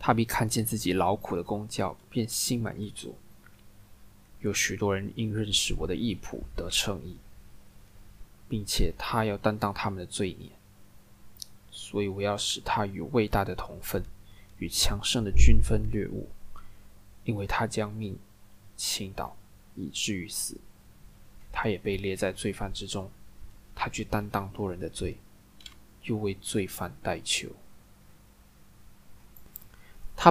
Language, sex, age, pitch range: Chinese, male, 20-39, 100-115 Hz